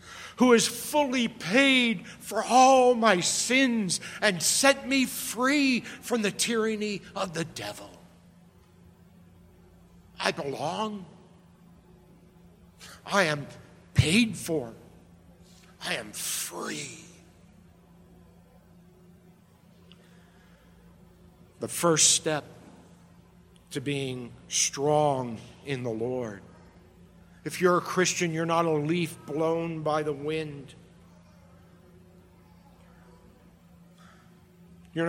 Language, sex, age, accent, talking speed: English, male, 60-79, American, 85 wpm